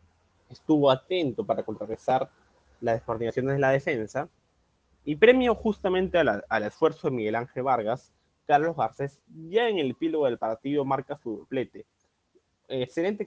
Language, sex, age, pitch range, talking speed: Spanish, male, 20-39, 110-160 Hz, 140 wpm